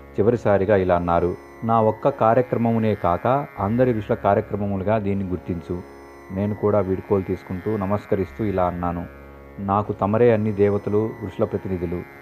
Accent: native